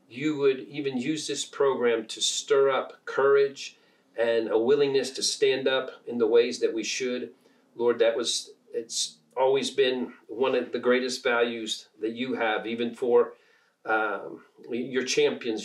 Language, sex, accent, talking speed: English, male, American, 155 wpm